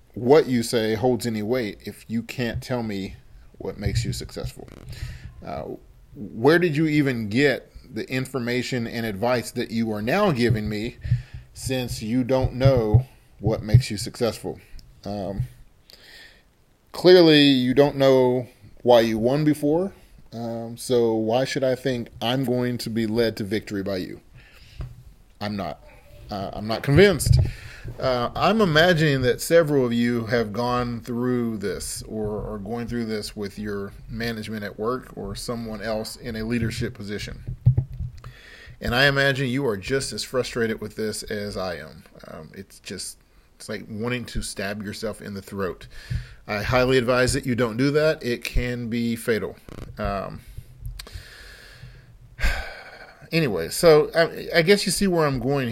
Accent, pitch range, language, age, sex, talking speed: American, 110-130 Hz, English, 30-49, male, 155 wpm